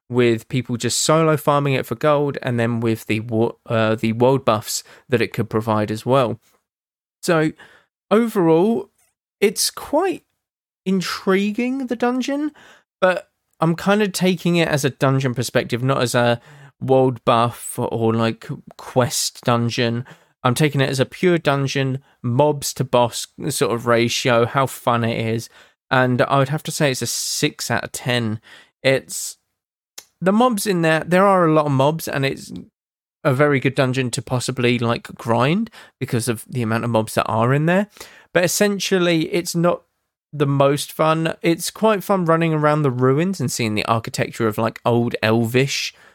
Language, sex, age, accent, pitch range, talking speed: English, male, 20-39, British, 120-165 Hz, 165 wpm